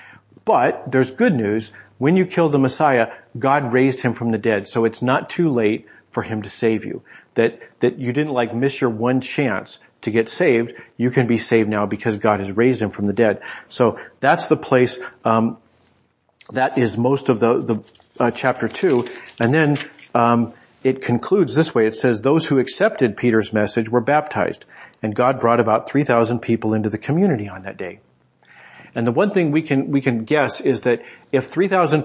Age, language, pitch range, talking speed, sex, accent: 40-59, English, 115-135 Hz, 200 wpm, male, American